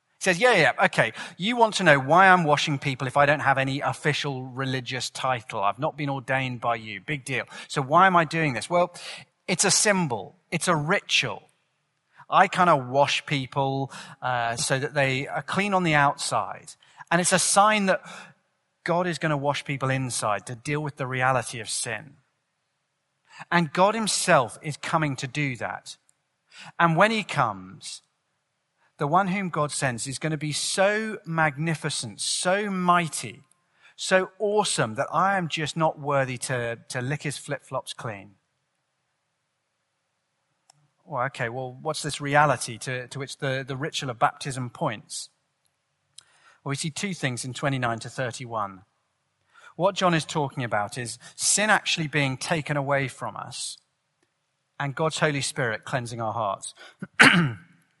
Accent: British